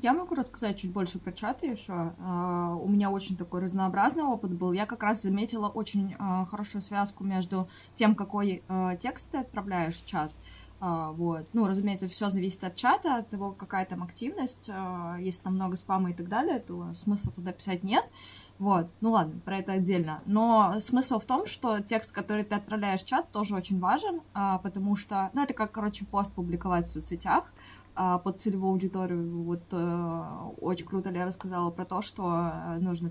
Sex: female